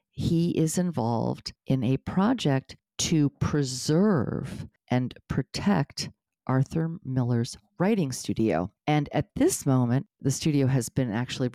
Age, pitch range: 50-69, 115-145 Hz